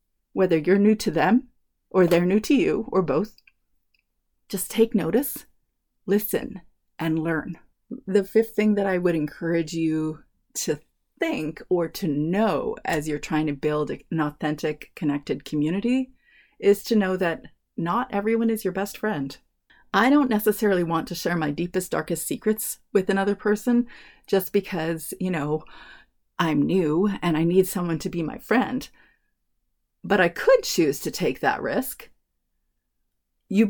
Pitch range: 165-225 Hz